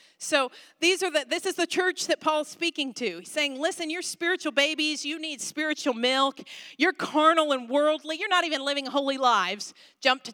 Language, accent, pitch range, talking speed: English, American, 245-320 Hz, 195 wpm